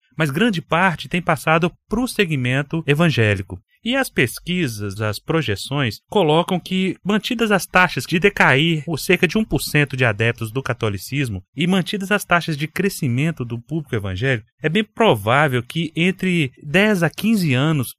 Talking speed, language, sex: 155 wpm, Portuguese, male